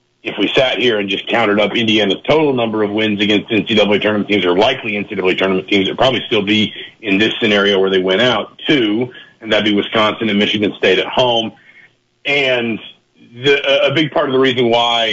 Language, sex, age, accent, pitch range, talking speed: English, male, 50-69, American, 100-120 Hz, 205 wpm